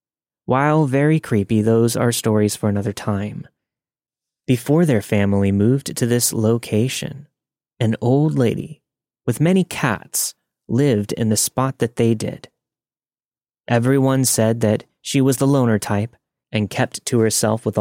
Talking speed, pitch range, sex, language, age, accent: 140 wpm, 105-135 Hz, male, English, 30-49, American